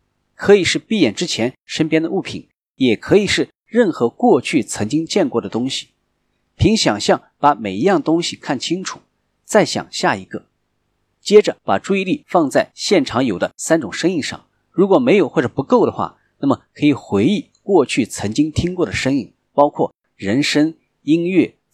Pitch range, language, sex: 110-170 Hz, Chinese, male